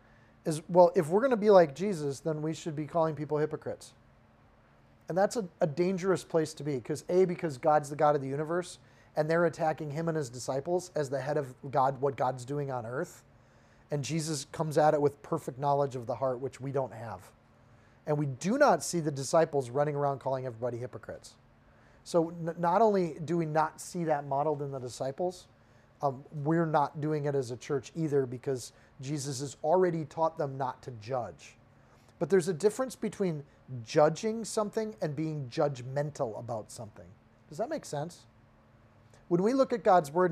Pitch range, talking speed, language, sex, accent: 130-170 Hz, 195 wpm, English, male, American